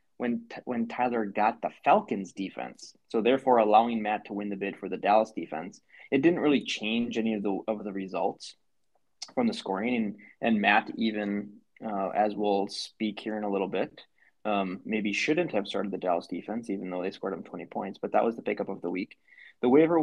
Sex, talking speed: male, 210 wpm